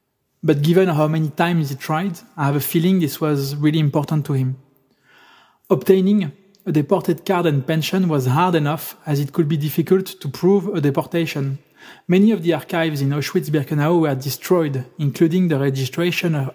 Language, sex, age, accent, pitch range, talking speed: English, male, 20-39, French, 140-170 Hz, 170 wpm